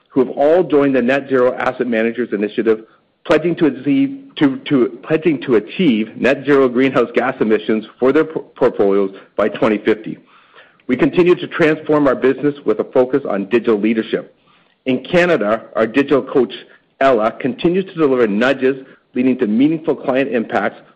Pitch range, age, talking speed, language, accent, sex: 120-155 Hz, 50-69, 145 wpm, English, American, male